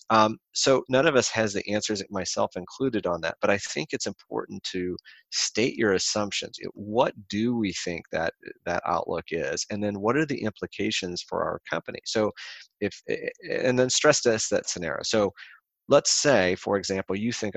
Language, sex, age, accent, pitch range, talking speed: English, male, 30-49, American, 90-105 Hz, 185 wpm